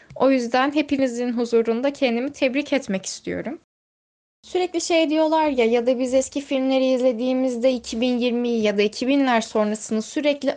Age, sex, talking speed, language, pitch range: 10-29, female, 135 wpm, Turkish, 230-275 Hz